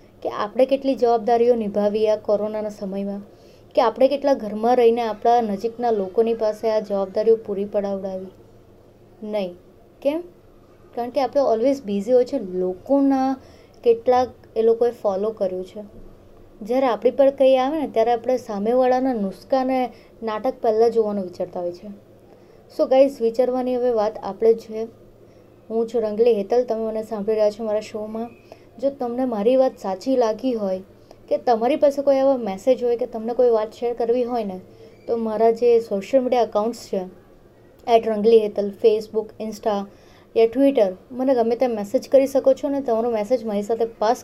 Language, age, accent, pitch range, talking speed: Gujarati, 30-49, native, 215-255 Hz, 135 wpm